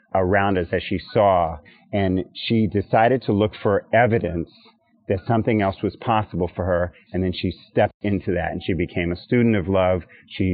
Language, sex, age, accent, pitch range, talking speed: English, male, 40-59, American, 95-120 Hz, 190 wpm